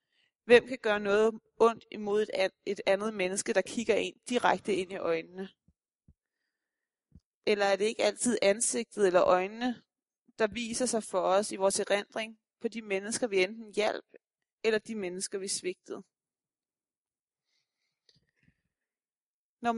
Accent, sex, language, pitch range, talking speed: native, female, Danish, 195-245 Hz, 135 wpm